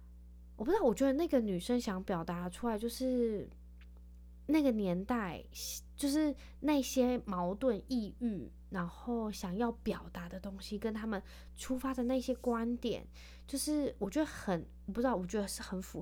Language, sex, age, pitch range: Chinese, female, 20-39, 170-235 Hz